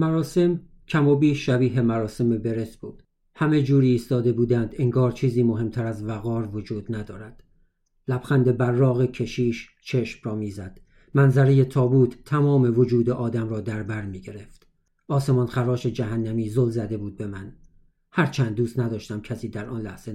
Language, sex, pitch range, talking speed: Persian, male, 110-130 Hz, 145 wpm